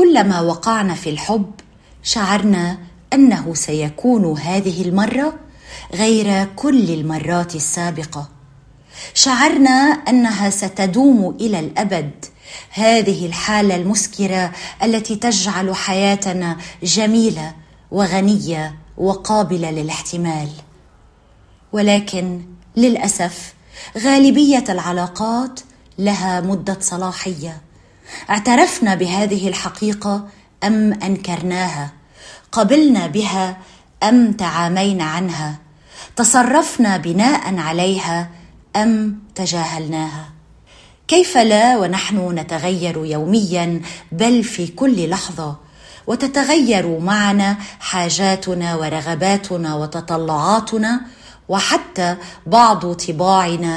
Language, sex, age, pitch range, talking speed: Arabic, female, 30-49, 165-215 Hz, 75 wpm